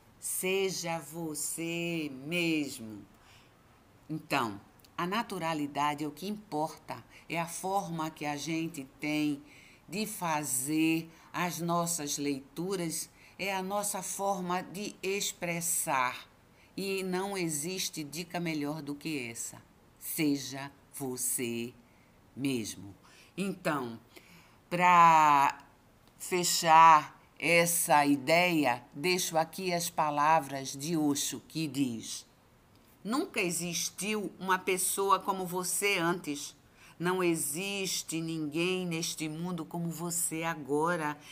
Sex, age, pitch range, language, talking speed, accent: female, 50-69, 145-185 Hz, Portuguese, 95 wpm, Brazilian